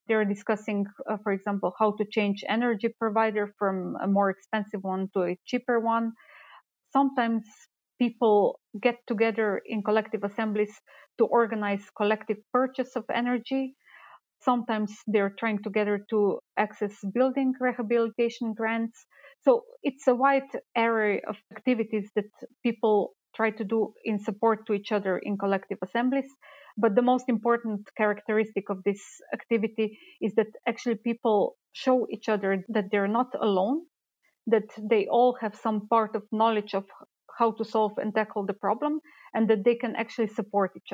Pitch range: 210-240 Hz